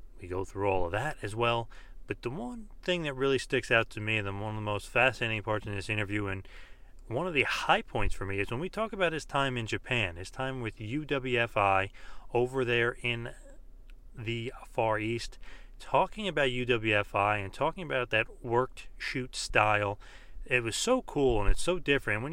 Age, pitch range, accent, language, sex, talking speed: 30-49, 105-135 Hz, American, English, male, 200 wpm